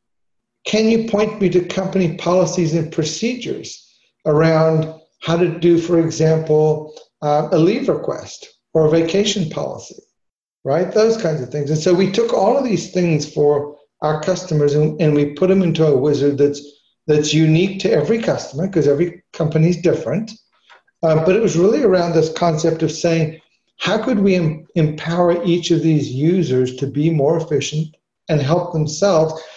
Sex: male